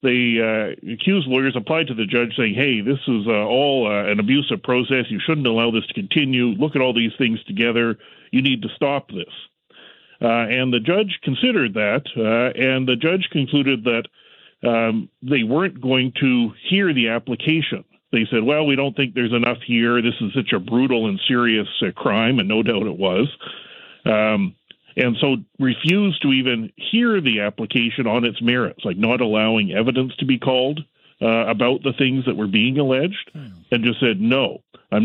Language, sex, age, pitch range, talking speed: English, male, 40-59, 120-145 Hz, 185 wpm